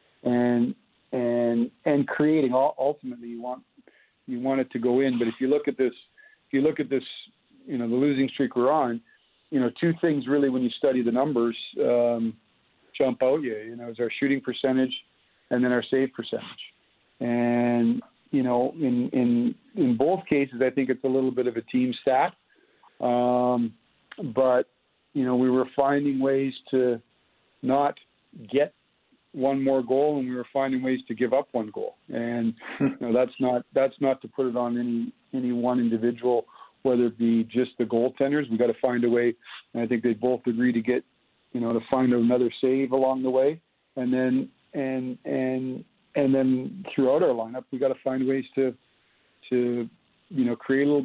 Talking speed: 190 wpm